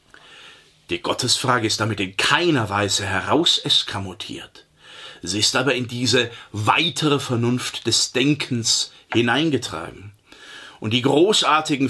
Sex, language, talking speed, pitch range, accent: male, German, 105 wpm, 105-140 Hz, German